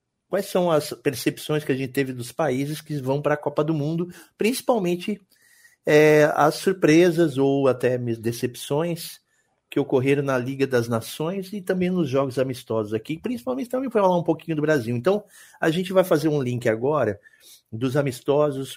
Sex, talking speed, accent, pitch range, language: male, 175 wpm, Brazilian, 120-165 Hz, Portuguese